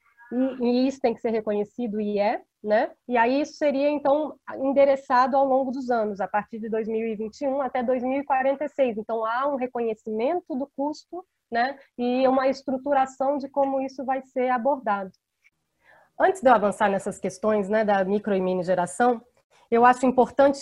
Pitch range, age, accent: 225-275 Hz, 20-39, Brazilian